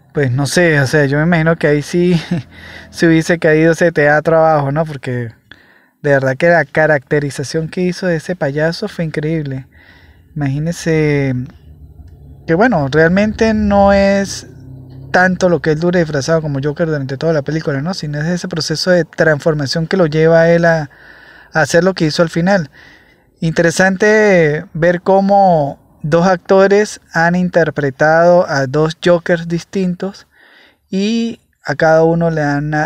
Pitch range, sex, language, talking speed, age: 145-175 Hz, male, Spanish, 160 wpm, 20-39